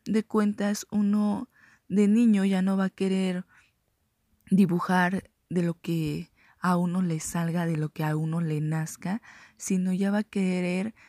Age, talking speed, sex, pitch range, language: 20-39, 160 wpm, female, 165-205 Hz, Spanish